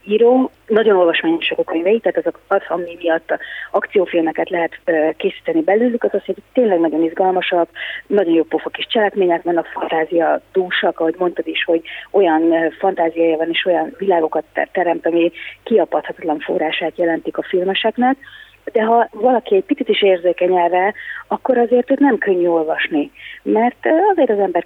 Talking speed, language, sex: 145 wpm, Hungarian, female